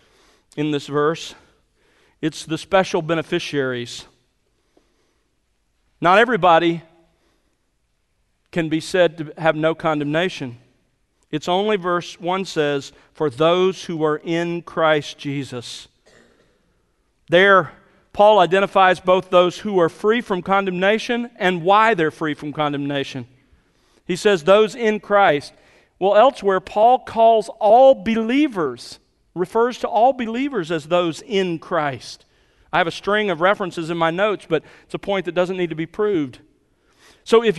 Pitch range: 165-220 Hz